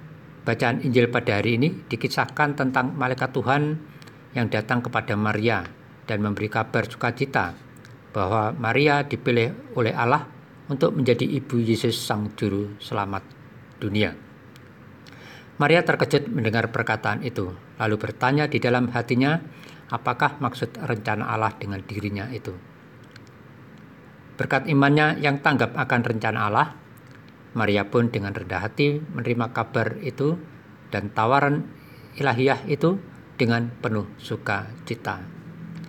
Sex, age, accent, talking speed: male, 50-69, native, 115 wpm